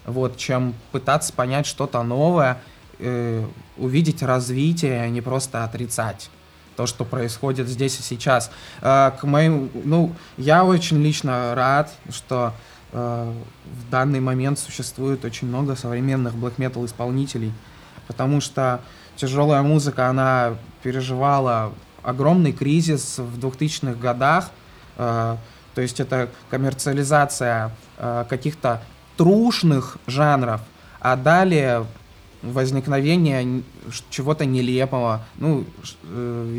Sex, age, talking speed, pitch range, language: male, 20-39, 110 wpm, 120-140 Hz, Russian